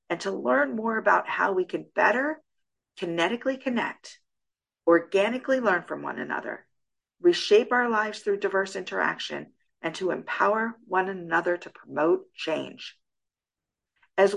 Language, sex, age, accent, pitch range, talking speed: English, female, 50-69, American, 175-230 Hz, 130 wpm